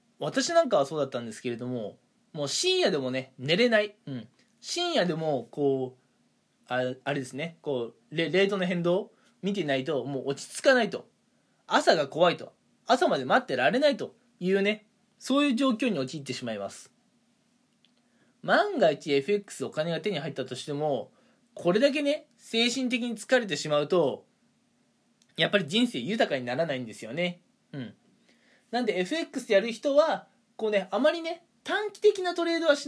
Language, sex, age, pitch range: Japanese, male, 20-39, 155-250 Hz